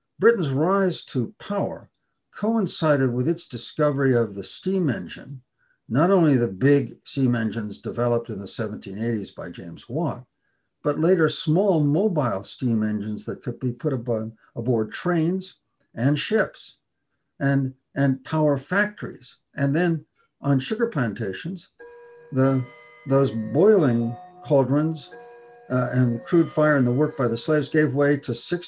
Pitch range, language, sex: 125-160 Hz, English, male